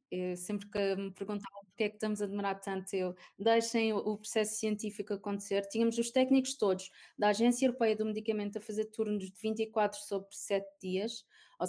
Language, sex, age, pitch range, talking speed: Portuguese, female, 20-39, 205-235 Hz, 180 wpm